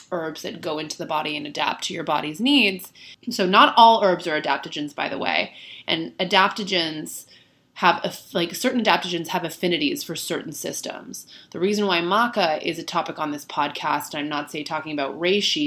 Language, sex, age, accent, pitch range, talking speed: English, female, 20-39, American, 150-180 Hz, 190 wpm